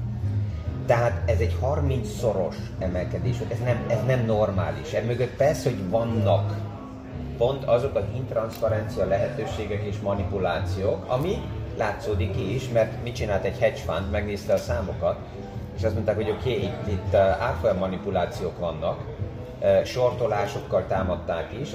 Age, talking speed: 30-49, 135 wpm